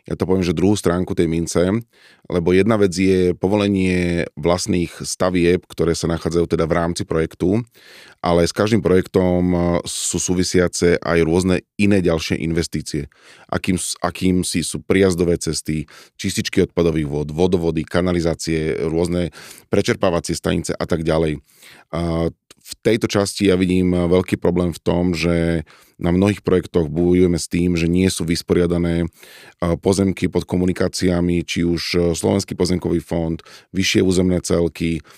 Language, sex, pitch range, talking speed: Slovak, male, 85-95 Hz, 135 wpm